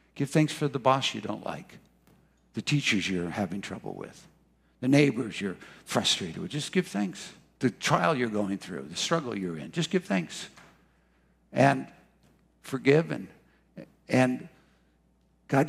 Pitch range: 105-160 Hz